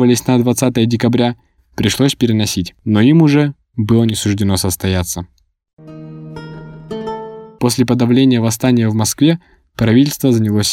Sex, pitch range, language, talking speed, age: male, 105-125 Hz, Russian, 105 wpm, 20-39